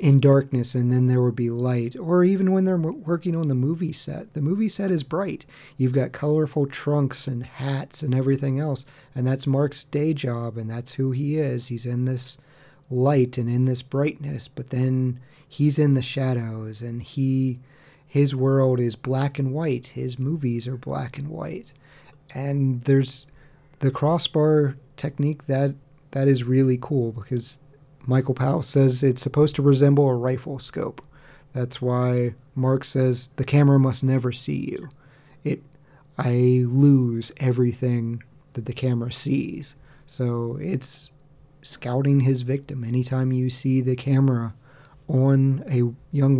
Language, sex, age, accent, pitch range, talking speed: English, male, 30-49, American, 125-145 Hz, 155 wpm